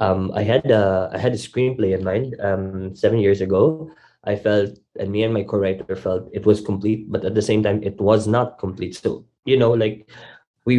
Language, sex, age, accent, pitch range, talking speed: English, male, 20-39, Filipino, 100-110 Hz, 215 wpm